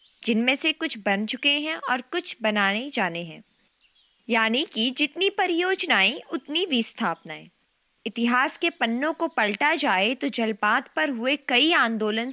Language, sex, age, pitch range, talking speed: Hindi, female, 20-39, 205-290 Hz, 135 wpm